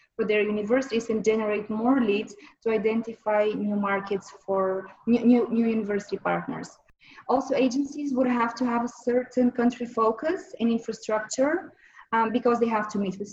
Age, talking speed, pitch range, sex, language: 20-39, 160 wpm, 205-240 Hz, female, English